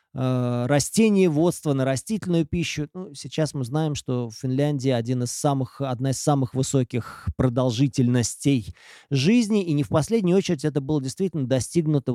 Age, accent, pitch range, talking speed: 20-39, native, 130-180 Hz, 150 wpm